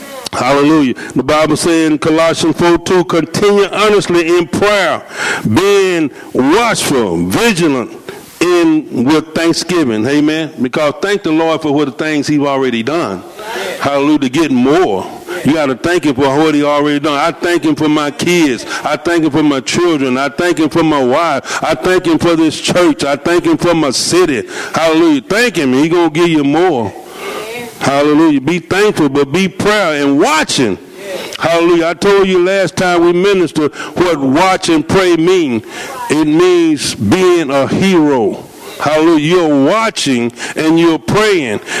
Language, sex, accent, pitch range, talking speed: English, male, American, 150-195 Hz, 165 wpm